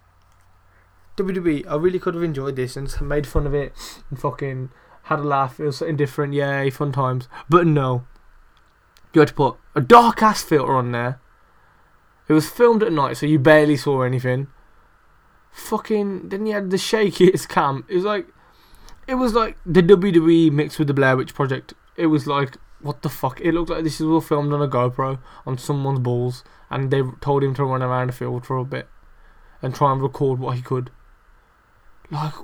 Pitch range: 130-165 Hz